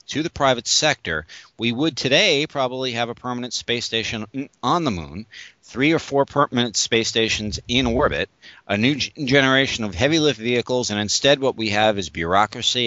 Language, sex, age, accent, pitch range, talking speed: English, male, 50-69, American, 105-130 Hz, 175 wpm